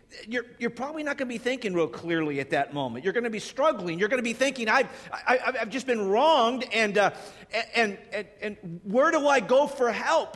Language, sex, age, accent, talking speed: English, male, 50-69, American, 230 wpm